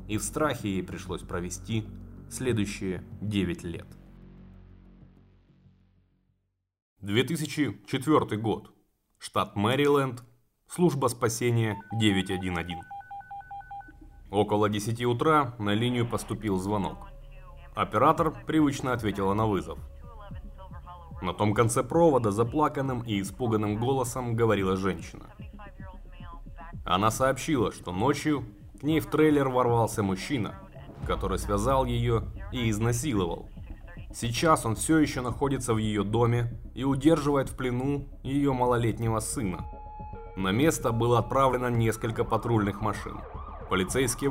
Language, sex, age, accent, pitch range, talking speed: Russian, male, 20-39, native, 100-135 Hz, 105 wpm